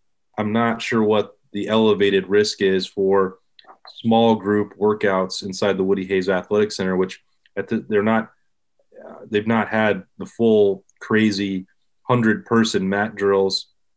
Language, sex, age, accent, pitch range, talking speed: English, male, 20-39, American, 100-110 Hz, 135 wpm